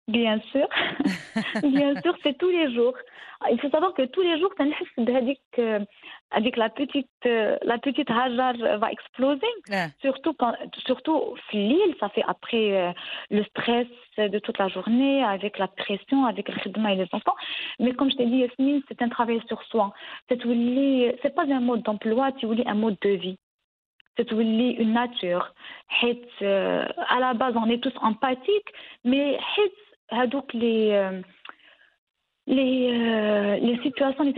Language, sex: English, female